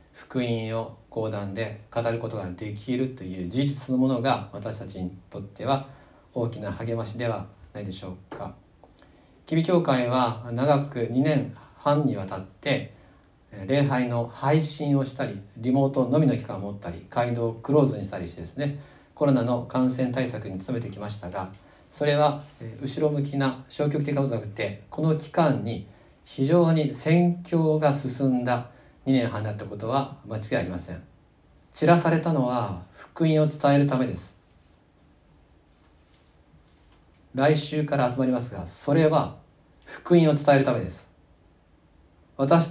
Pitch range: 95-140 Hz